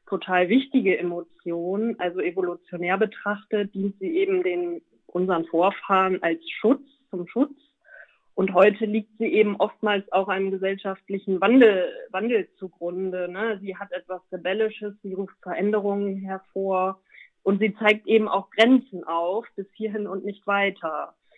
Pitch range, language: 185-215 Hz, German